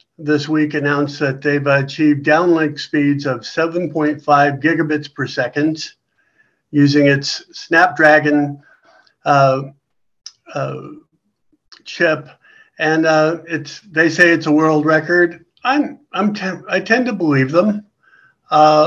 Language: English